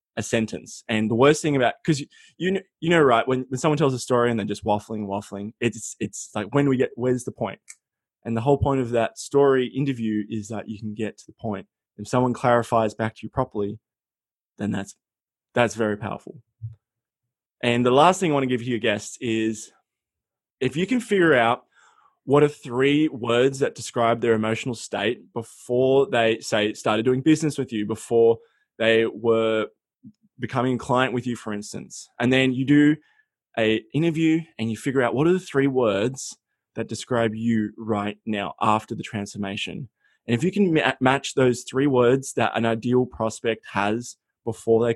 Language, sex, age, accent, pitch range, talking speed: English, male, 20-39, Australian, 110-135 Hz, 190 wpm